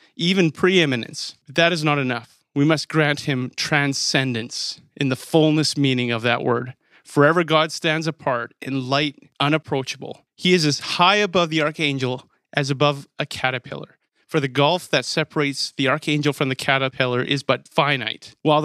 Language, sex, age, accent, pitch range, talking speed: English, male, 30-49, American, 135-165 Hz, 160 wpm